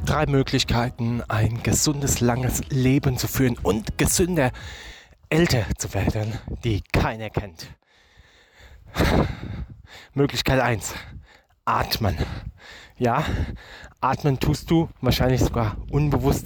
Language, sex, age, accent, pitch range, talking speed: German, male, 20-39, German, 110-140 Hz, 95 wpm